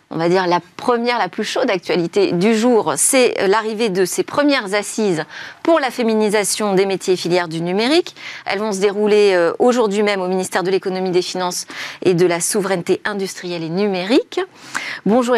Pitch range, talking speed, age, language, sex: 180-240 Hz, 180 wpm, 40-59, French, female